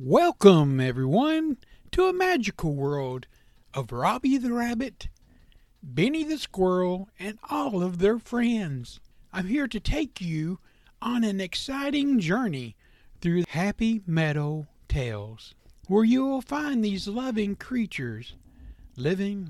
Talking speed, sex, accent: 120 wpm, male, American